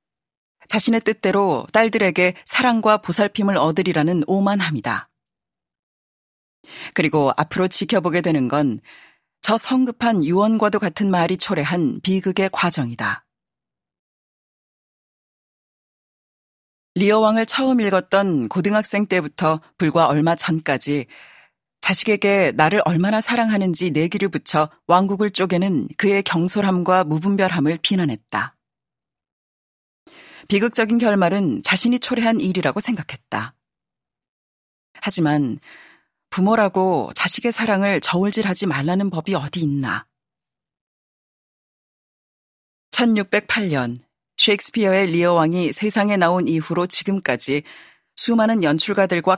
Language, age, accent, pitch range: Korean, 40-59, native, 155-205 Hz